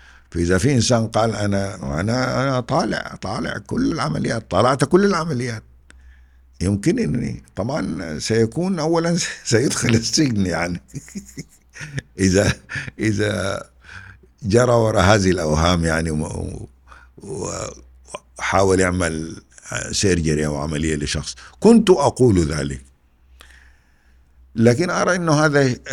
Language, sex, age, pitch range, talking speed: Arabic, male, 60-79, 65-95 Hz, 95 wpm